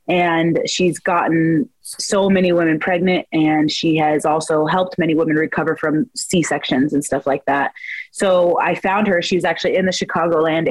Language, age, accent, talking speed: English, 20-39, American, 175 wpm